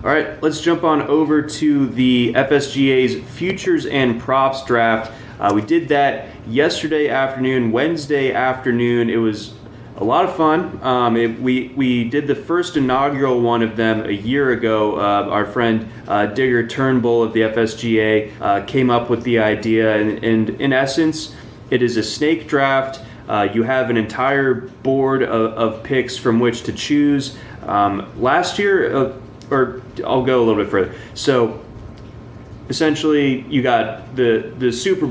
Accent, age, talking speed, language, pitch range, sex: American, 20-39, 160 wpm, English, 115-135 Hz, male